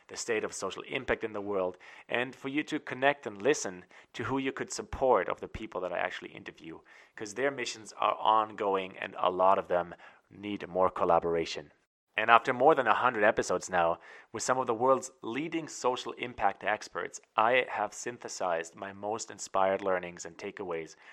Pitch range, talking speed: 95-120 Hz, 185 wpm